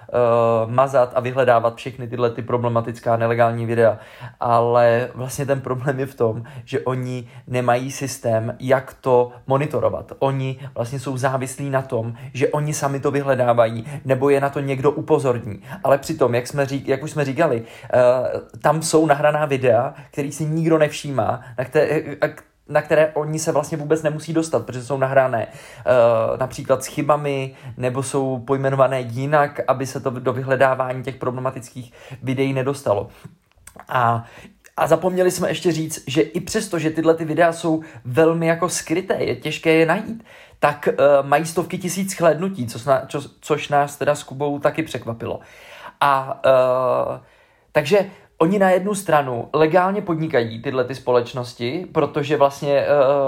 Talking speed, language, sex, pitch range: 155 wpm, Czech, male, 125-155 Hz